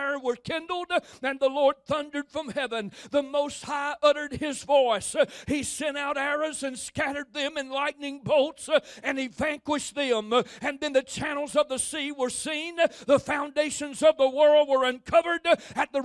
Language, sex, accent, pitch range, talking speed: English, male, American, 255-305 Hz, 170 wpm